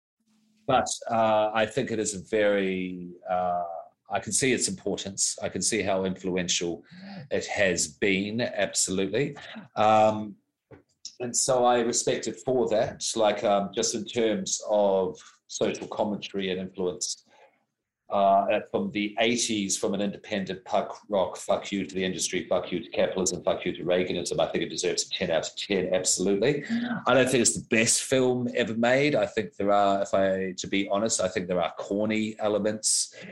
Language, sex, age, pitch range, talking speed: English, male, 40-59, 95-110 Hz, 175 wpm